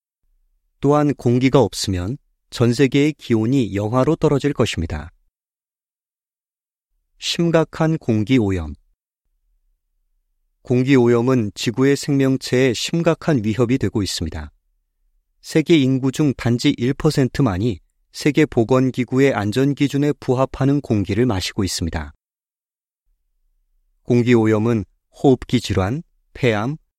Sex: male